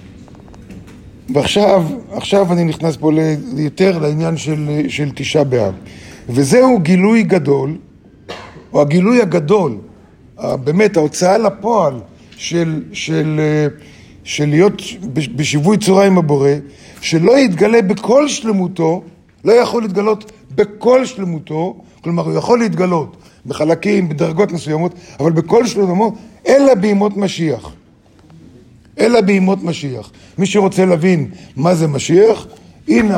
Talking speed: 110 wpm